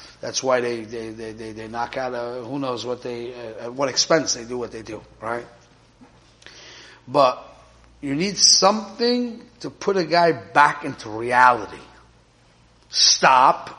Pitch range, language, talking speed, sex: 120-160 Hz, English, 155 wpm, male